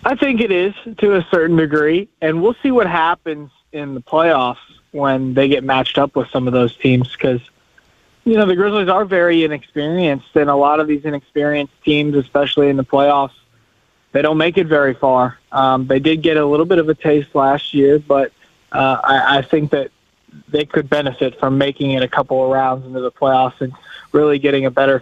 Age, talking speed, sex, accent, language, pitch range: 20-39, 210 wpm, male, American, English, 135-160 Hz